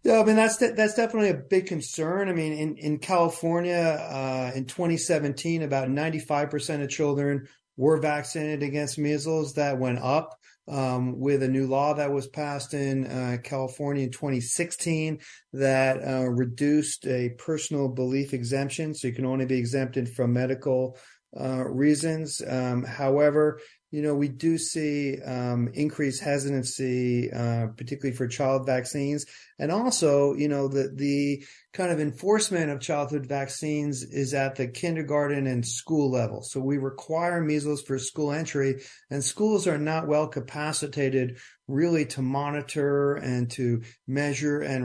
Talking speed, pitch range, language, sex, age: 150 wpm, 130-155 Hz, English, male, 40-59